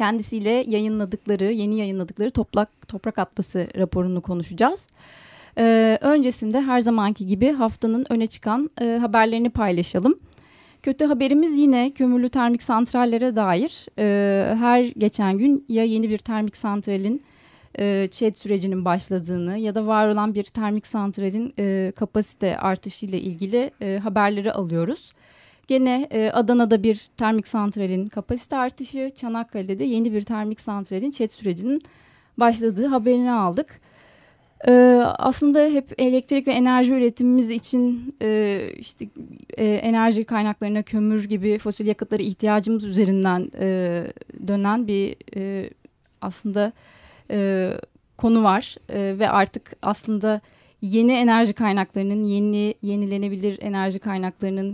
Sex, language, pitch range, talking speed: female, Turkish, 200-235 Hz, 110 wpm